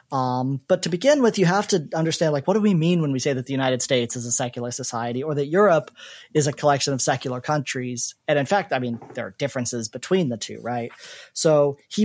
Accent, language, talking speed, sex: American, English, 240 wpm, male